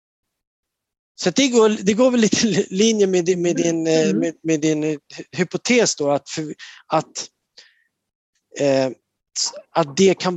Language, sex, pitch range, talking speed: Swedish, male, 125-175 Hz, 125 wpm